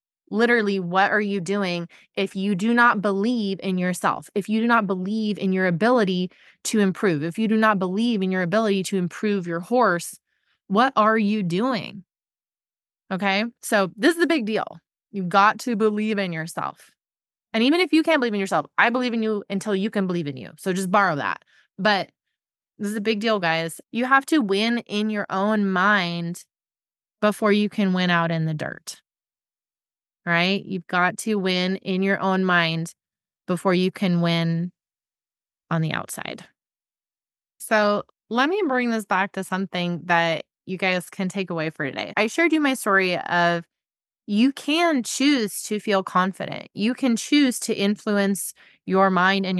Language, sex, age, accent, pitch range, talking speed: English, female, 20-39, American, 180-220 Hz, 180 wpm